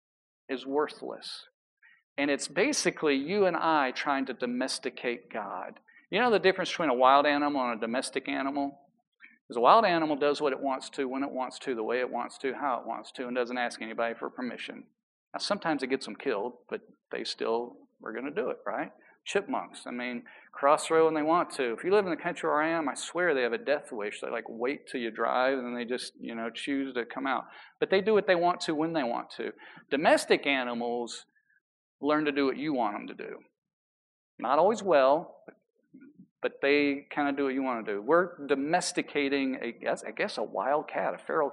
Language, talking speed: English, 220 wpm